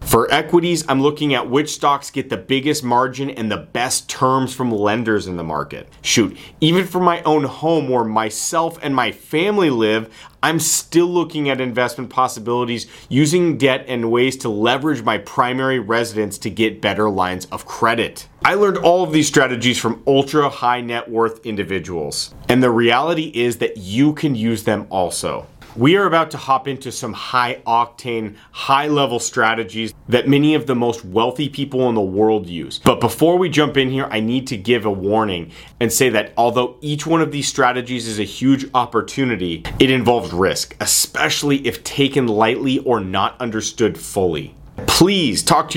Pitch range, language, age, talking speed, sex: 115-145 Hz, English, 30-49, 180 wpm, male